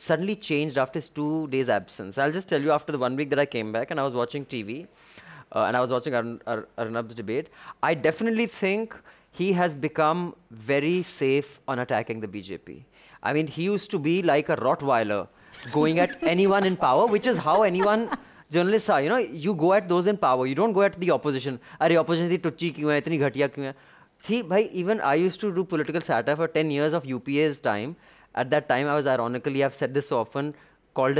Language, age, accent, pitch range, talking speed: English, 20-39, Indian, 145-210 Hz, 210 wpm